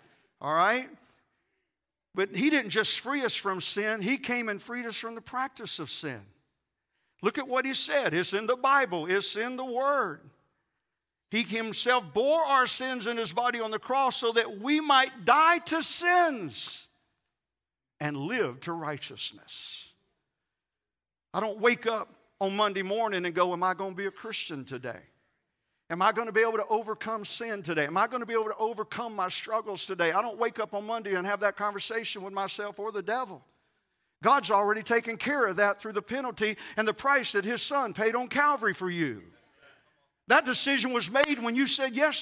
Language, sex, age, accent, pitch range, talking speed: English, male, 50-69, American, 200-270 Hz, 195 wpm